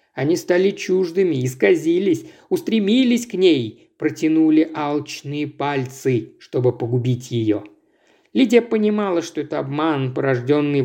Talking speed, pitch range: 105 wpm, 135-215 Hz